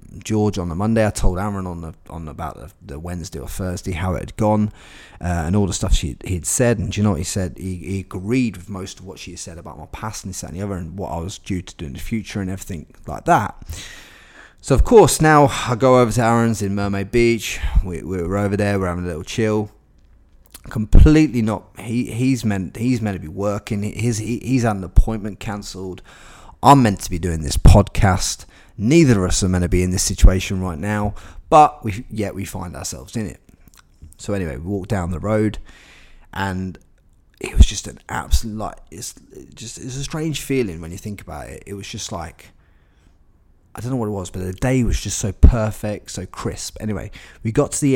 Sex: male